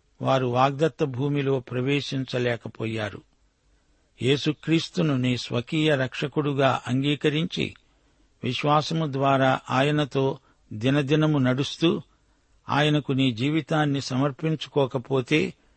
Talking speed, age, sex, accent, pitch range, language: 70 wpm, 60-79, male, native, 125-145 Hz, Telugu